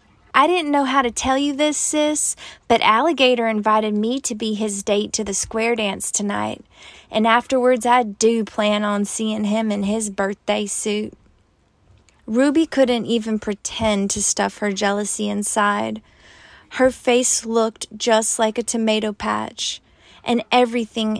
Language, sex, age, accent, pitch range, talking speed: English, female, 20-39, American, 215-260 Hz, 150 wpm